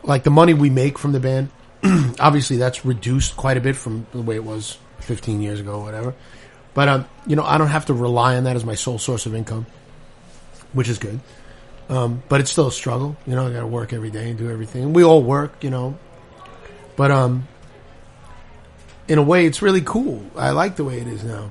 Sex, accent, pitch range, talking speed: male, American, 115-145 Hz, 225 wpm